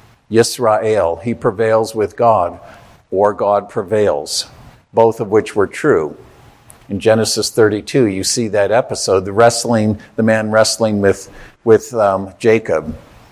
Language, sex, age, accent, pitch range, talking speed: English, male, 50-69, American, 105-125 Hz, 130 wpm